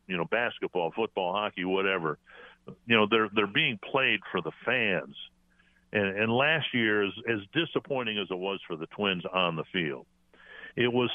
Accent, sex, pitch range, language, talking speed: American, male, 85-105 Hz, English, 170 wpm